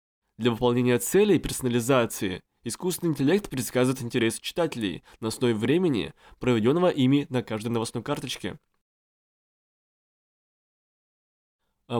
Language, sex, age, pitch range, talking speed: Russian, male, 20-39, 120-145 Hz, 100 wpm